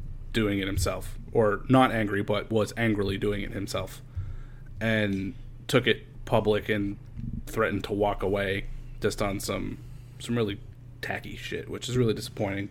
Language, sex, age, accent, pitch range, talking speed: English, male, 30-49, American, 105-125 Hz, 150 wpm